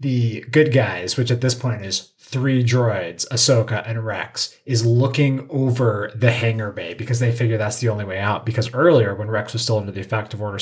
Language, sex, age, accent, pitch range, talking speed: English, male, 30-49, American, 110-125 Hz, 215 wpm